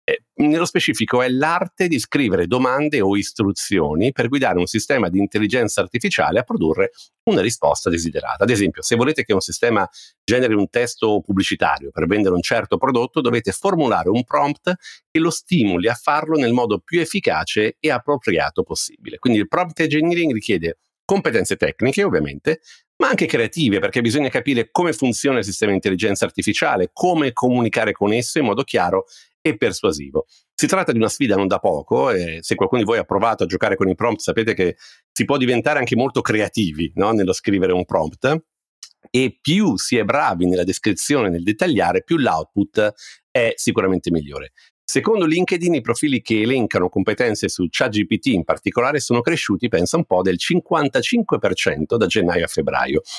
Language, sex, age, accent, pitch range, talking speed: Italian, male, 50-69, native, 100-165 Hz, 170 wpm